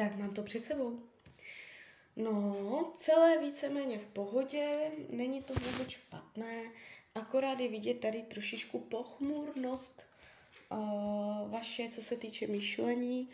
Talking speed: 115 wpm